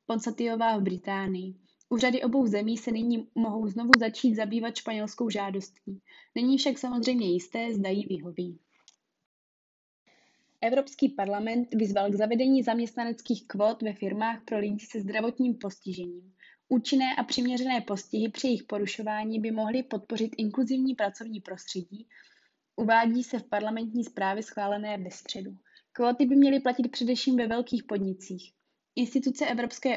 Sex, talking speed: female, 130 wpm